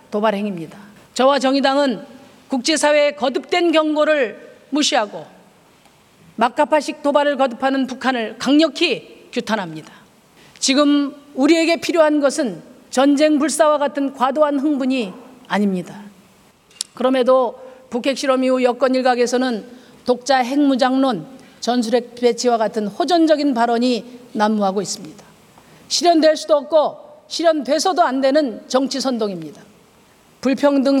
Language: Korean